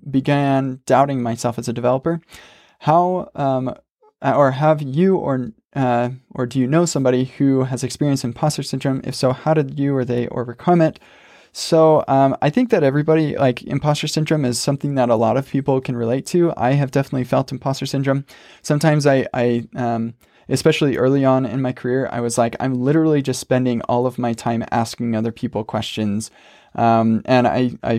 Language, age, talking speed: English, 20-39, 185 wpm